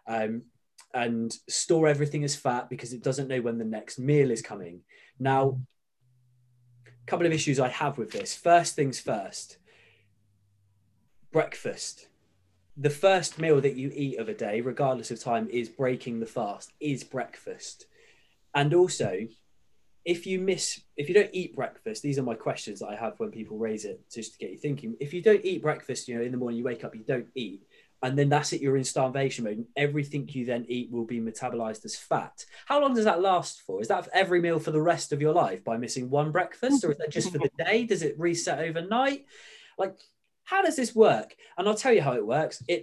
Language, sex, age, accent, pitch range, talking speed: English, male, 20-39, British, 120-175 Hz, 215 wpm